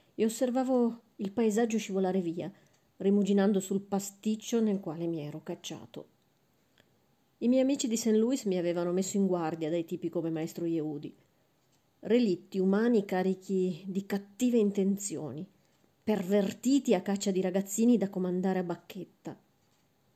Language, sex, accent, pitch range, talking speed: Italian, female, native, 175-210 Hz, 135 wpm